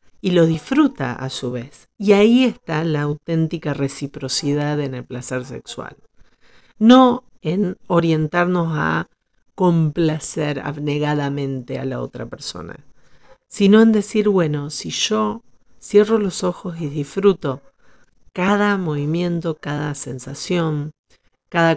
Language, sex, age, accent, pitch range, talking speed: Spanish, female, 40-59, Argentinian, 140-180 Hz, 115 wpm